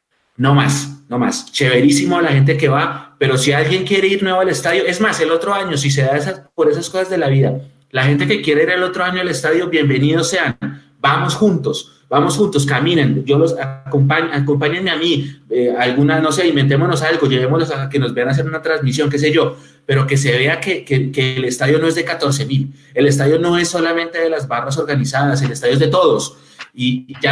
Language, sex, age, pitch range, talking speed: Spanish, male, 30-49, 135-160 Hz, 215 wpm